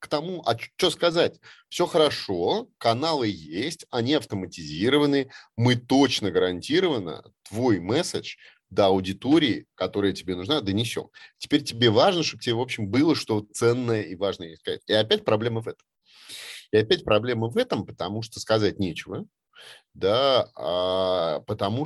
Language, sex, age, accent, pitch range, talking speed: Russian, male, 30-49, native, 95-130 Hz, 145 wpm